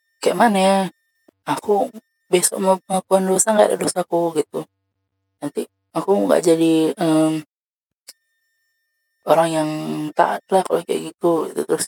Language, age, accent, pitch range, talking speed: Indonesian, 20-39, native, 150-205 Hz, 120 wpm